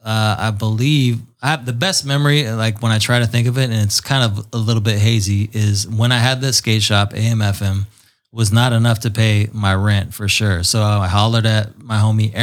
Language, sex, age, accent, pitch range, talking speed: English, male, 20-39, American, 110-125 Hz, 225 wpm